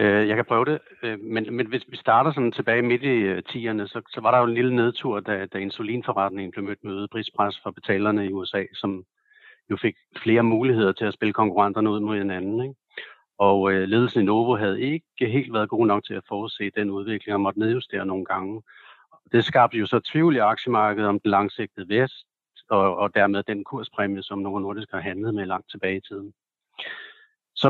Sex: male